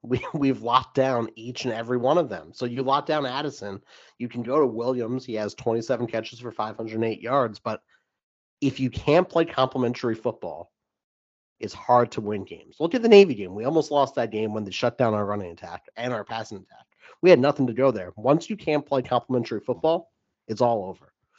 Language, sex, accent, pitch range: English, male, American, 110-135 Hz